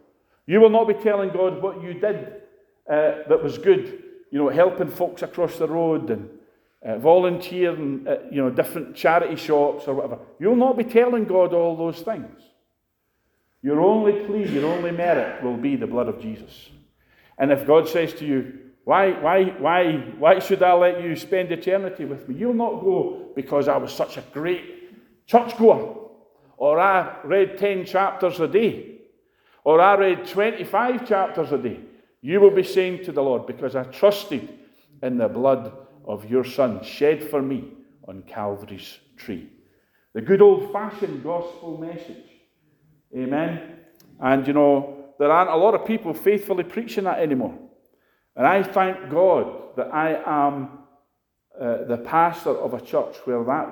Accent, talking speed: British, 165 wpm